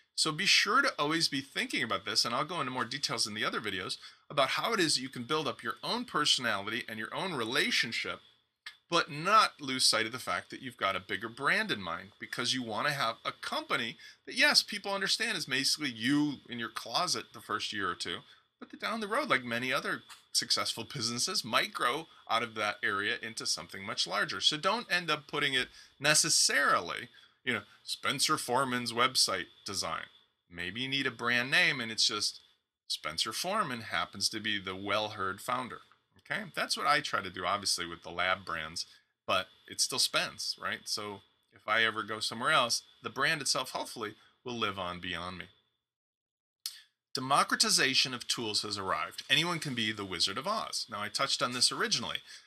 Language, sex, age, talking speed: English, male, 30-49, 195 wpm